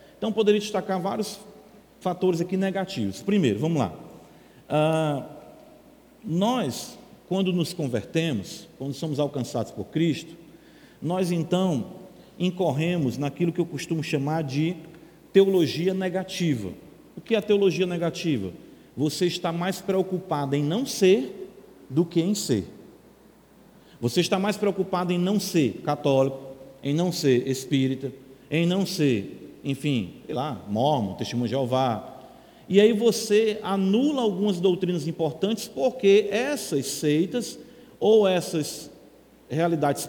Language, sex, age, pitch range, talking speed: Portuguese, male, 50-69, 150-205 Hz, 125 wpm